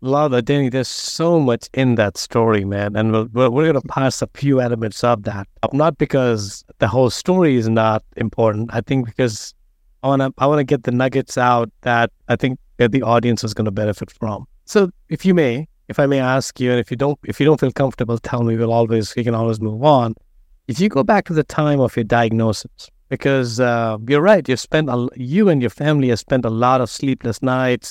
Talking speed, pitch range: 230 wpm, 115-145 Hz